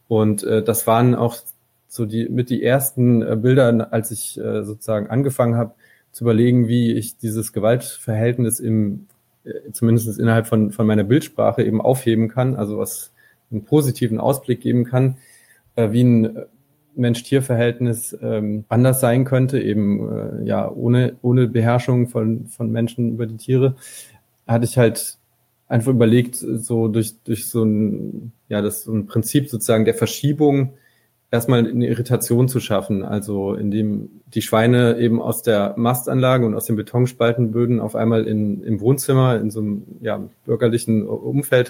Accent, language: German, German